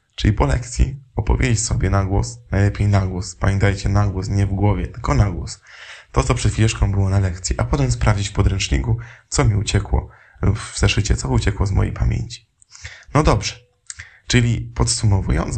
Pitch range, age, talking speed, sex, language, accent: 100-120 Hz, 20-39, 175 wpm, male, Polish, native